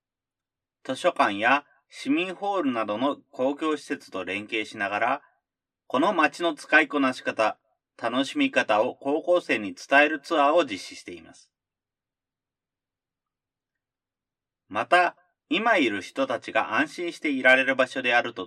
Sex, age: male, 30-49